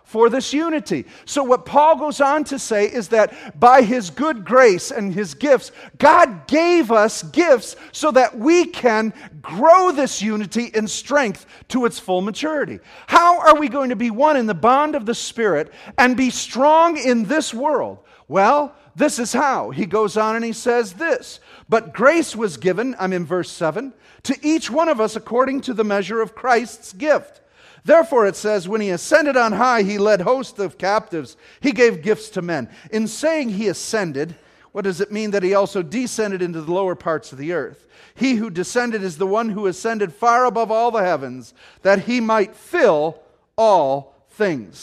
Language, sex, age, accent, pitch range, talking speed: English, male, 40-59, American, 185-260 Hz, 190 wpm